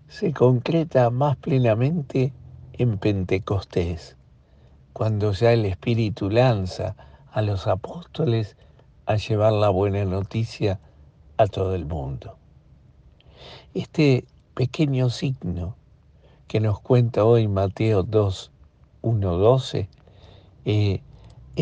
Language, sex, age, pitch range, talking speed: Spanish, male, 60-79, 100-130 Hz, 90 wpm